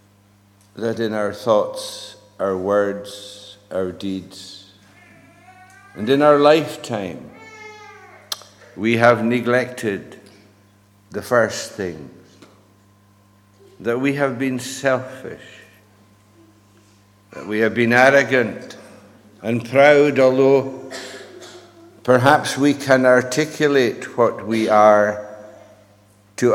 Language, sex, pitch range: English, male, 100-120 Hz